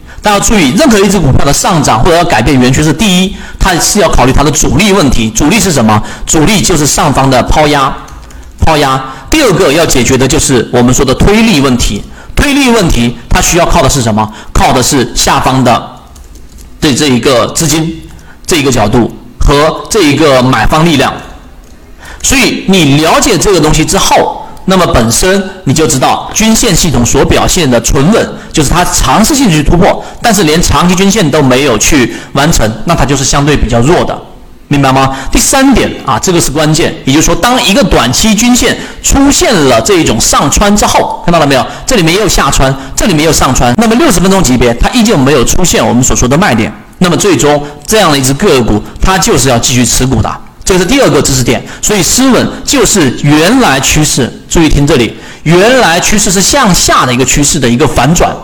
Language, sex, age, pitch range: Chinese, male, 40-59, 130-190 Hz